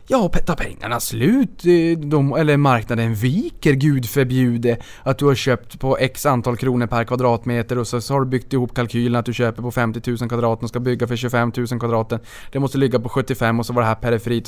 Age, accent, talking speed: 20-39, Norwegian, 220 wpm